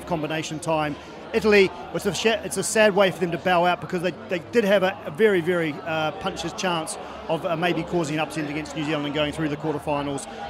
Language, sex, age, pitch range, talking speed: English, male, 40-59, 165-200 Hz, 235 wpm